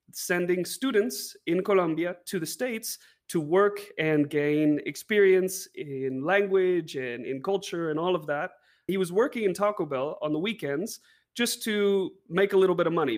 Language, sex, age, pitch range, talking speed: English, male, 30-49, 150-200 Hz, 175 wpm